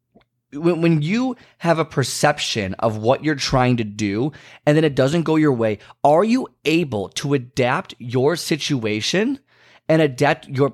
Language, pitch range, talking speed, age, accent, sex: English, 120-160 Hz, 155 wpm, 30-49, American, male